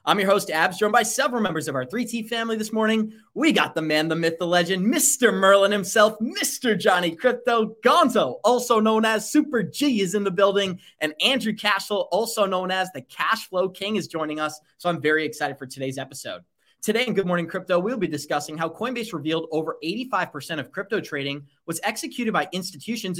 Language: English